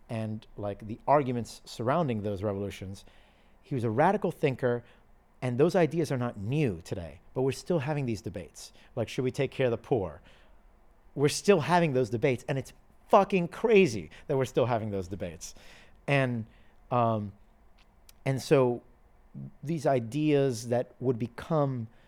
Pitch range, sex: 110-150 Hz, male